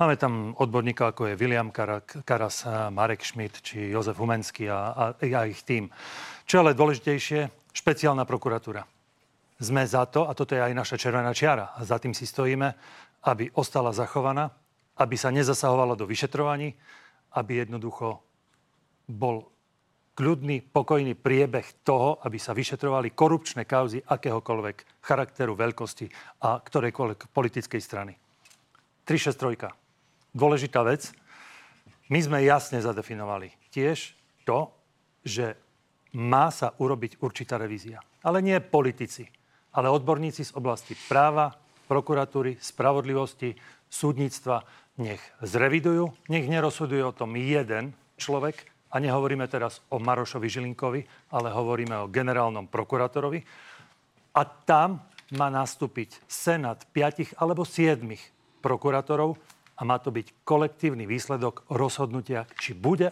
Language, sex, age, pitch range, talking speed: Slovak, male, 40-59, 115-145 Hz, 120 wpm